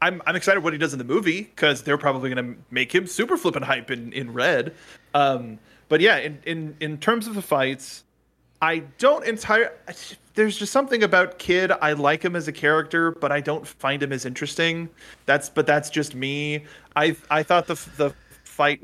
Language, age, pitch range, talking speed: English, 20-39, 135-165 Hz, 200 wpm